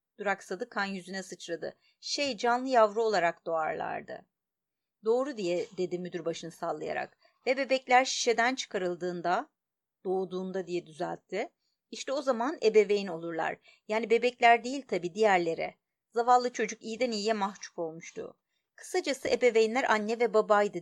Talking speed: 125 wpm